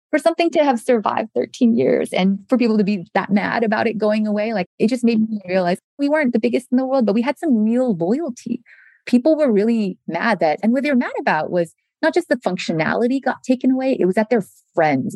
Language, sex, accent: English, female, American